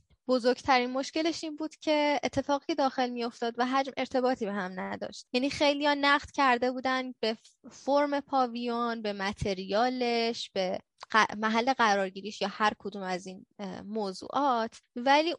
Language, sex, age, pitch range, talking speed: Persian, female, 10-29, 205-280 Hz, 135 wpm